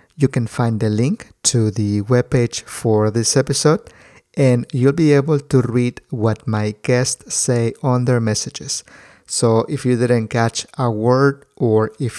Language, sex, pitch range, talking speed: English, male, 115-140 Hz, 160 wpm